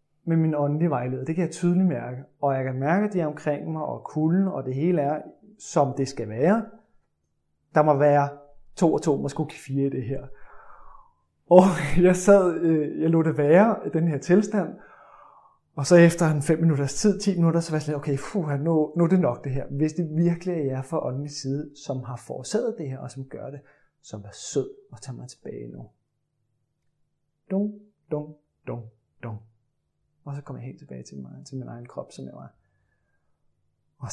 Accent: Danish